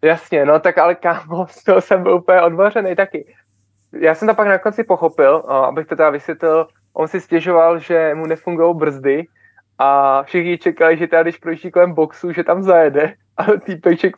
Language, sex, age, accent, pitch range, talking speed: Czech, male, 20-39, native, 150-180 Hz, 195 wpm